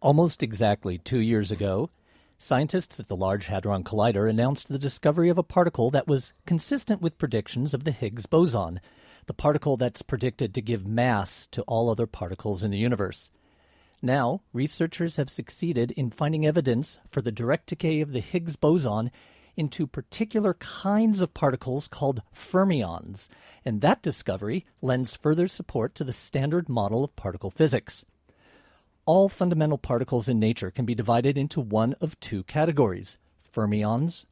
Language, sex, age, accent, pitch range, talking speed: English, male, 50-69, American, 110-160 Hz, 155 wpm